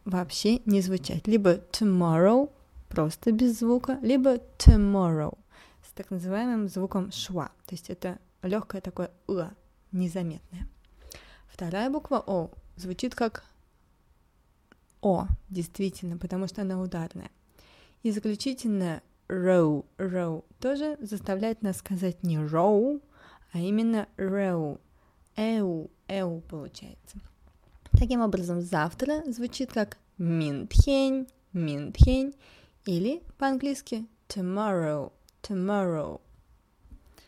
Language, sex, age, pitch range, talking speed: Russian, female, 20-39, 175-240 Hz, 95 wpm